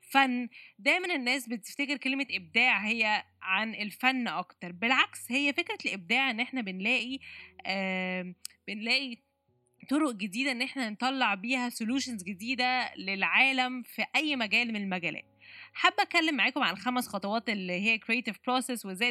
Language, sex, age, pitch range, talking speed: Arabic, female, 20-39, 195-260 Hz, 140 wpm